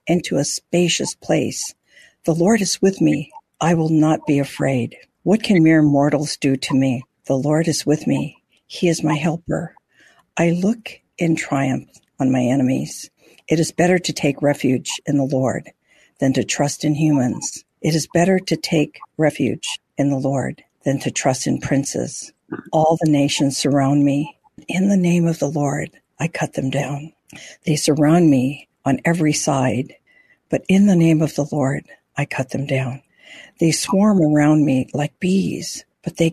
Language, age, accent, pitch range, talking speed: English, 60-79, American, 140-170 Hz, 175 wpm